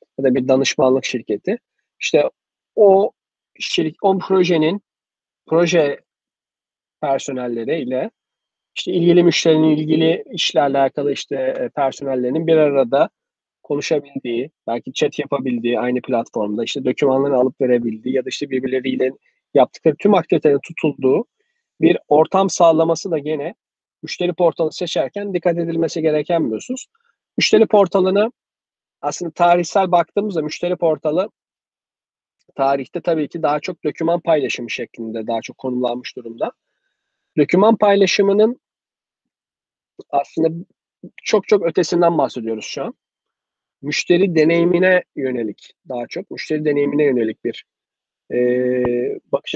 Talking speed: 110 wpm